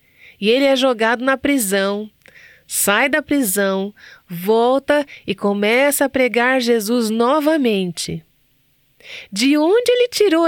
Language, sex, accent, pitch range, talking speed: Portuguese, female, Brazilian, 190-275 Hz, 115 wpm